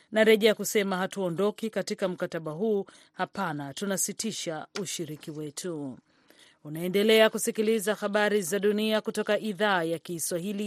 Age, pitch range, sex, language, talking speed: 40-59, 165-210 Hz, female, Swahili, 100 wpm